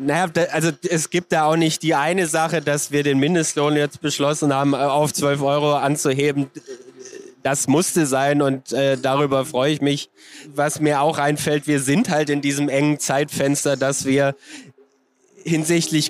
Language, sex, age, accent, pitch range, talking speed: German, male, 20-39, German, 135-155 Hz, 160 wpm